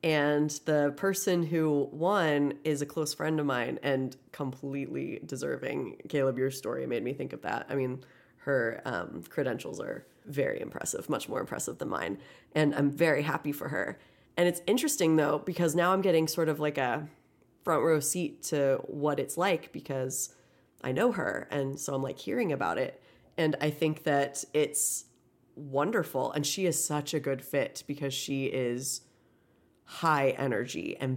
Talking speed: 175 wpm